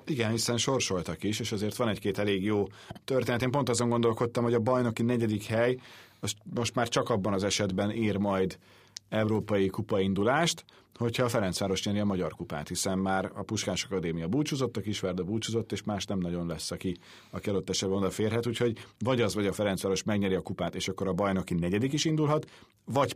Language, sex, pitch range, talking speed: Hungarian, male, 95-120 Hz, 190 wpm